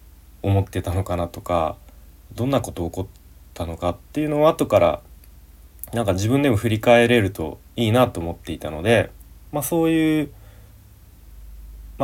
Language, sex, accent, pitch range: Japanese, male, native, 75-115 Hz